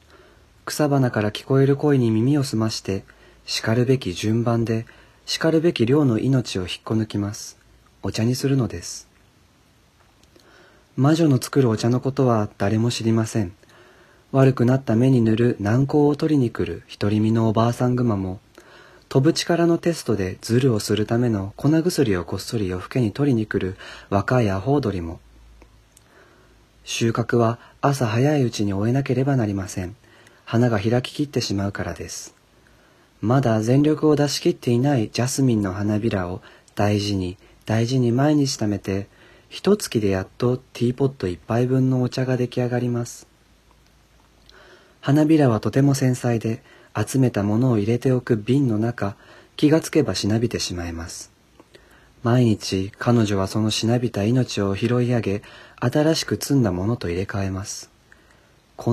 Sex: male